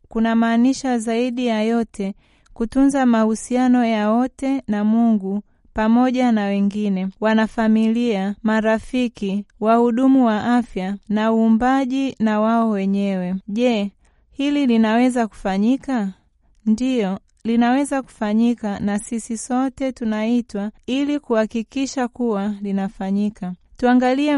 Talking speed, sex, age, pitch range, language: 100 wpm, female, 30-49, 210-250 Hz, Swahili